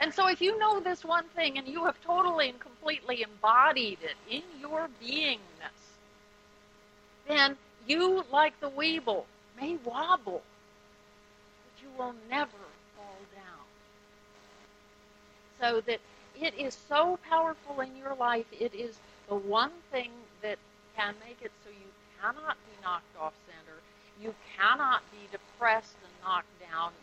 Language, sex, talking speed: English, female, 140 wpm